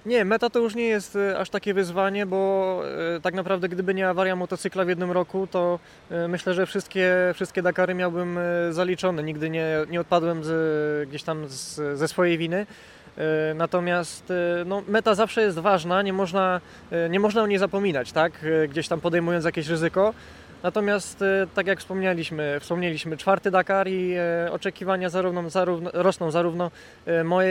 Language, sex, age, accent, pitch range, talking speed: Polish, male, 20-39, native, 170-195 Hz, 160 wpm